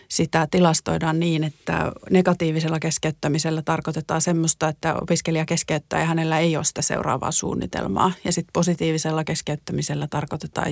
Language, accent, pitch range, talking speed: Finnish, native, 155-180 Hz, 130 wpm